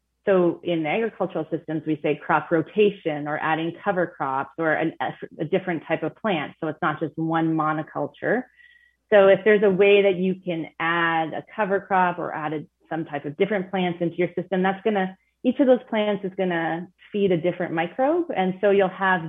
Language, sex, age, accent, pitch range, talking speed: English, female, 30-49, American, 155-180 Hz, 200 wpm